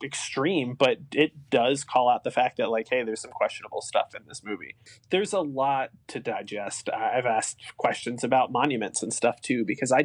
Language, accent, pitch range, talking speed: English, American, 120-150 Hz, 195 wpm